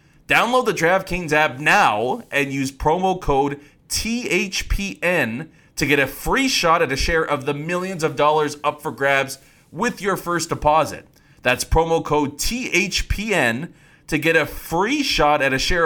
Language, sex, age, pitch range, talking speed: English, male, 30-49, 120-150 Hz, 160 wpm